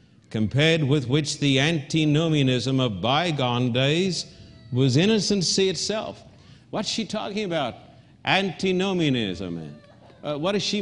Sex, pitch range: male, 135-180 Hz